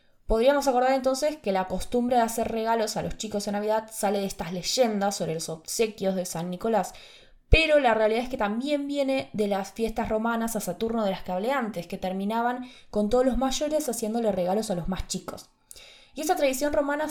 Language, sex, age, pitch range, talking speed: Spanish, female, 20-39, 190-265 Hz, 195 wpm